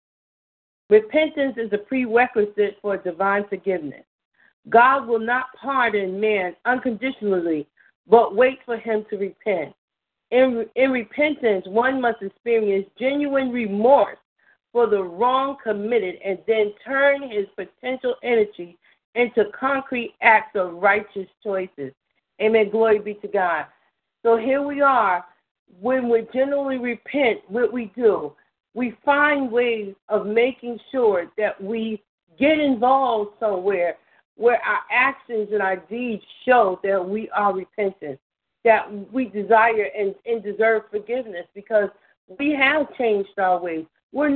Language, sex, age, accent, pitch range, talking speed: English, female, 50-69, American, 210-255 Hz, 130 wpm